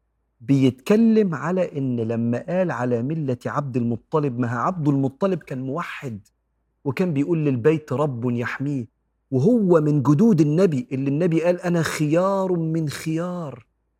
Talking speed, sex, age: 130 wpm, male, 40-59